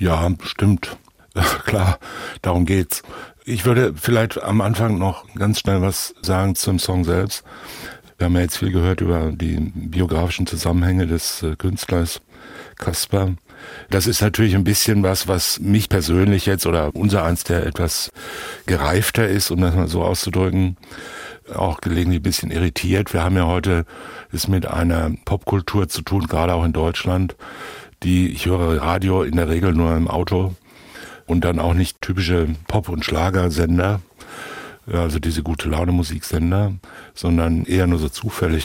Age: 60-79